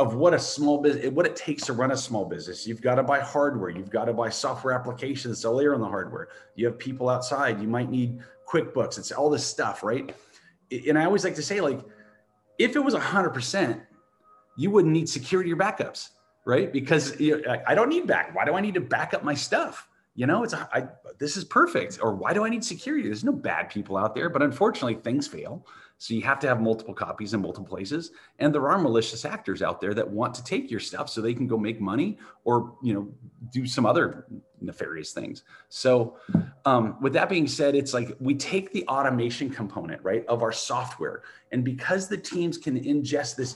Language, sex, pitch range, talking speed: English, male, 115-145 Hz, 220 wpm